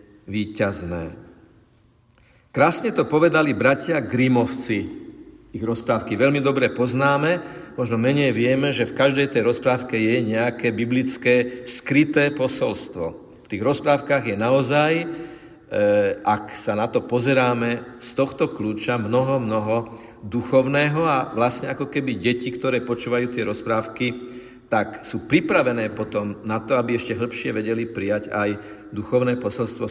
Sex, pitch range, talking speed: male, 115-145 Hz, 125 wpm